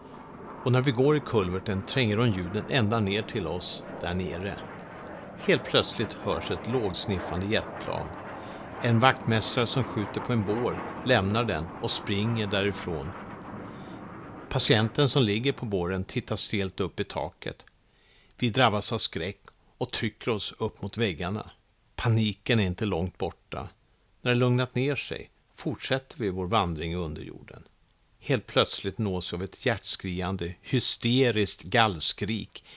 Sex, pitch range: male, 95-120 Hz